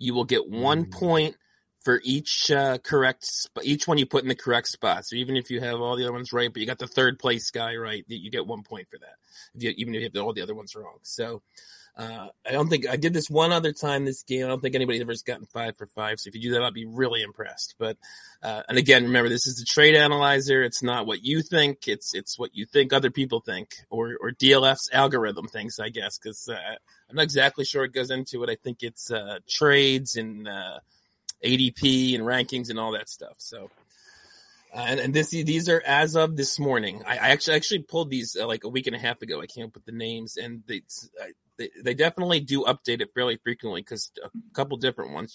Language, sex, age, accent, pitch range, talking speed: English, male, 30-49, American, 115-140 Hz, 245 wpm